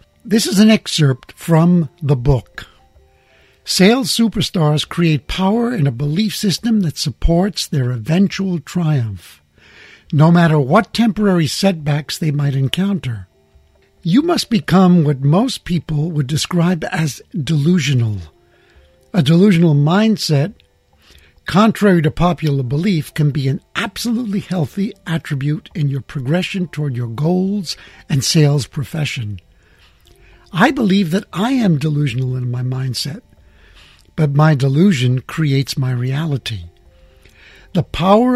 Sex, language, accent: male, English, American